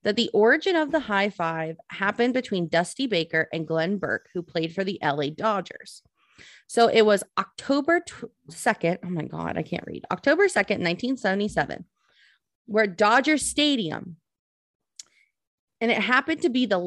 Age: 30-49